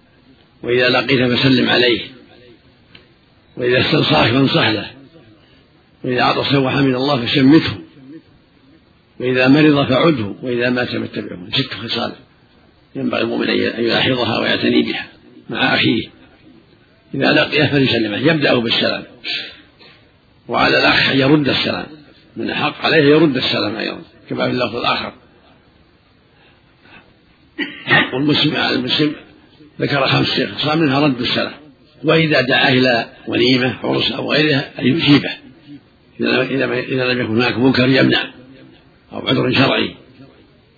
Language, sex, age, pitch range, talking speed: Arabic, male, 50-69, 120-140 Hz, 110 wpm